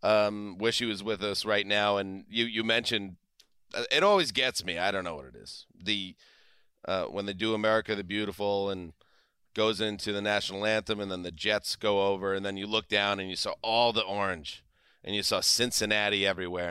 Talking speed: 210 wpm